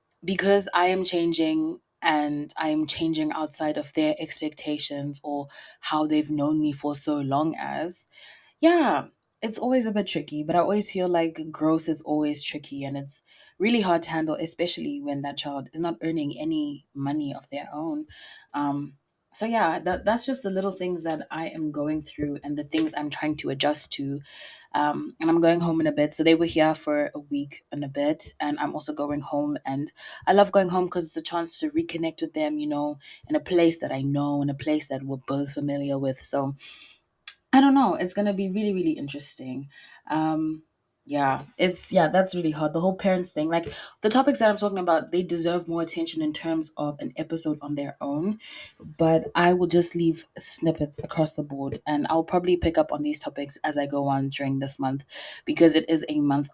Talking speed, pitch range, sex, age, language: 205 wpm, 145-185 Hz, female, 20-39, English